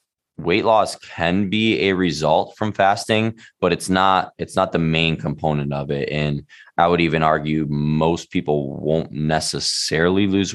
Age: 20-39